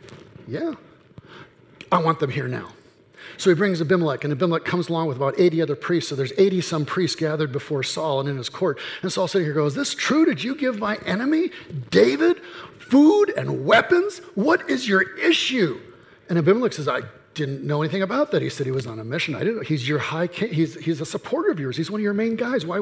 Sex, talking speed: male, 230 wpm